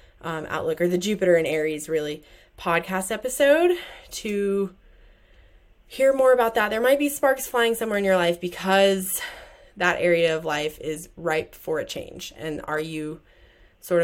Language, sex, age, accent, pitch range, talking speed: English, female, 20-39, American, 160-205 Hz, 160 wpm